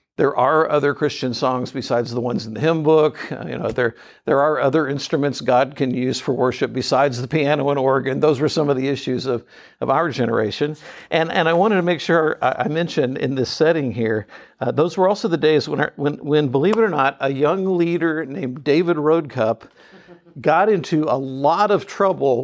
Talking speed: 210 wpm